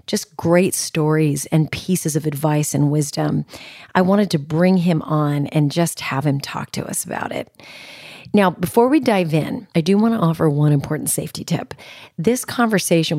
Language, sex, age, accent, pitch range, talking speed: English, female, 30-49, American, 155-200 Hz, 180 wpm